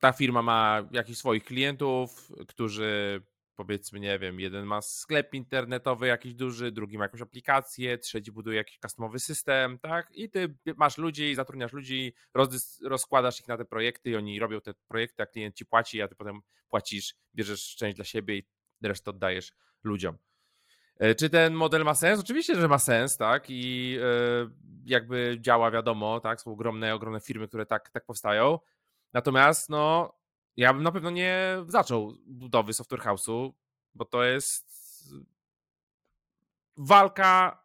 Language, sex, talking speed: Polish, male, 150 wpm